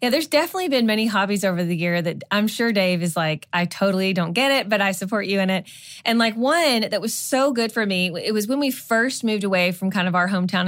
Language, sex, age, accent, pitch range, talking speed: English, female, 20-39, American, 185-235 Hz, 265 wpm